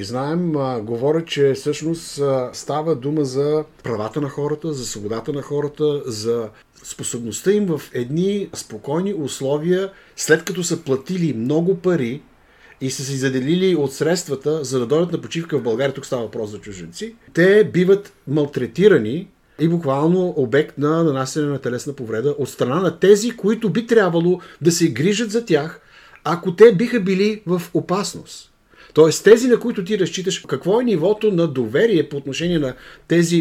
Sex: male